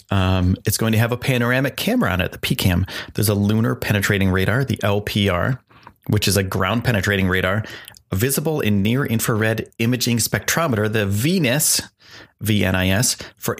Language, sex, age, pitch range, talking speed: English, male, 30-49, 95-120 Hz, 150 wpm